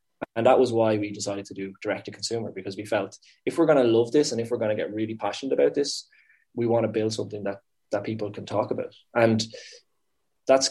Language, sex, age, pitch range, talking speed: English, male, 20-39, 105-120 Hz, 230 wpm